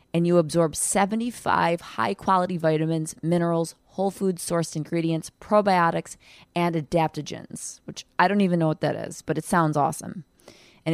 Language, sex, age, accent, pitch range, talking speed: English, female, 20-39, American, 160-185 Hz, 145 wpm